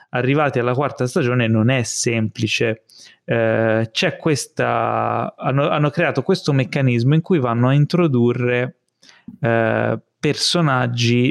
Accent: native